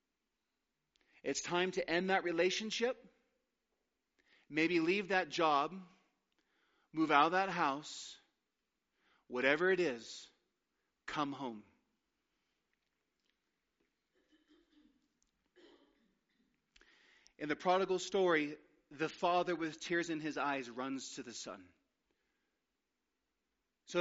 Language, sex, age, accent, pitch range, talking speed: English, male, 40-59, American, 150-185 Hz, 90 wpm